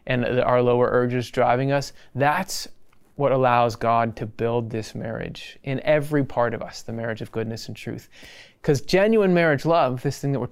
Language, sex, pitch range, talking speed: English, male, 120-160 Hz, 190 wpm